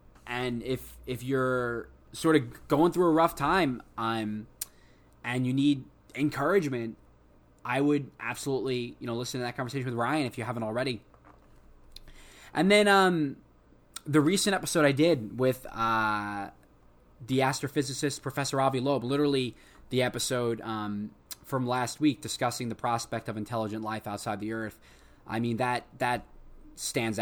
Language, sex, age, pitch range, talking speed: English, male, 20-39, 105-130 Hz, 150 wpm